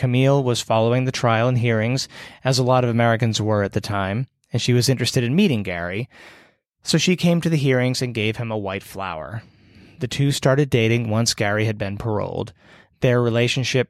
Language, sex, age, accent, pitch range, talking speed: English, male, 30-49, American, 105-130 Hz, 200 wpm